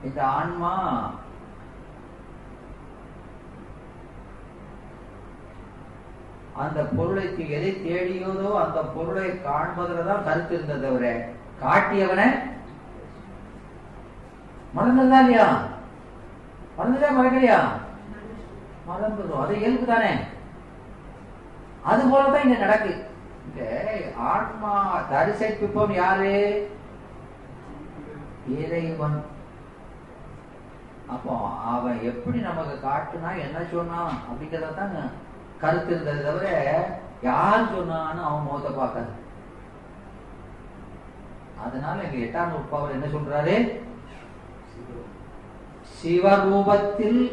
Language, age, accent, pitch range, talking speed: Tamil, 40-59, native, 145-205 Hz, 45 wpm